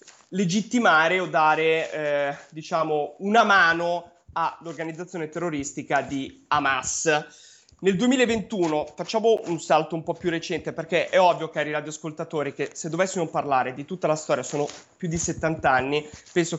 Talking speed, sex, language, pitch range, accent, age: 140 wpm, male, Italian, 145-170 Hz, native, 20-39